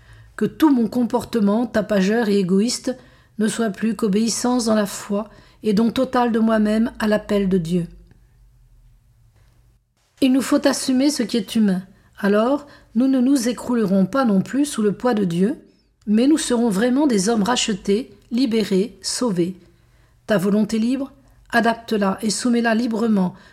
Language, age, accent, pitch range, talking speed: French, 50-69, French, 195-245 Hz, 155 wpm